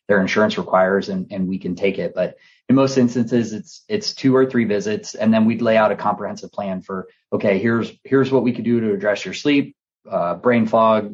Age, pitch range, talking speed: 30-49, 95-120 Hz, 225 wpm